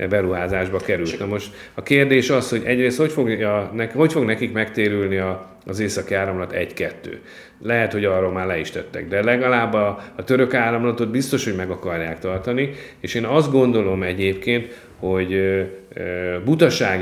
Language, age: Hungarian, 30-49